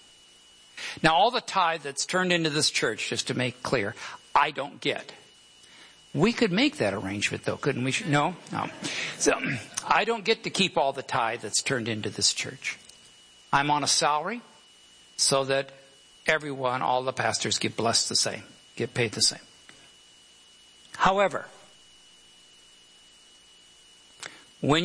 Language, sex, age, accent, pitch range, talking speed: English, male, 60-79, American, 125-150 Hz, 145 wpm